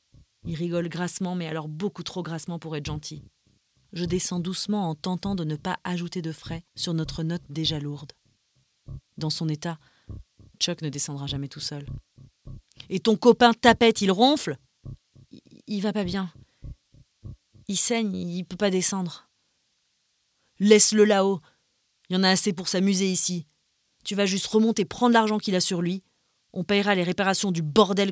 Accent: French